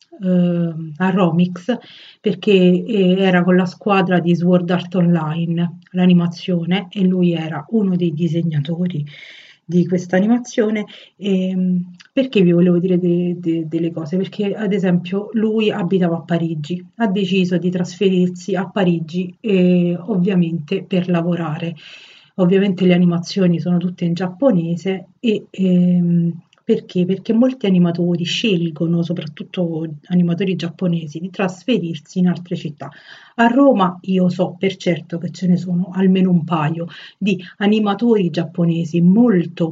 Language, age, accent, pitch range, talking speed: Italian, 40-59, native, 175-190 Hz, 130 wpm